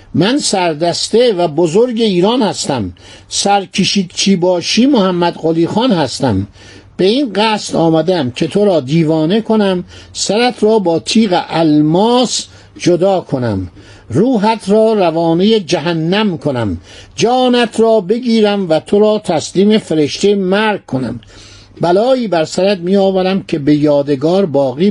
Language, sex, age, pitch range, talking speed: Persian, male, 60-79, 150-215 Hz, 125 wpm